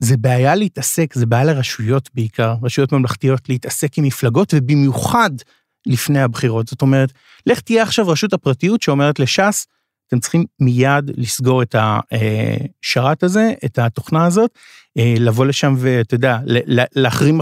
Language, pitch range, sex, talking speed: Hebrew, 125-150 Hz, male, 135 wpm